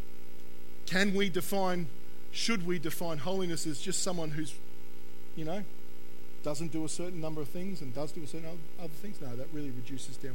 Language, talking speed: English, 185 wpm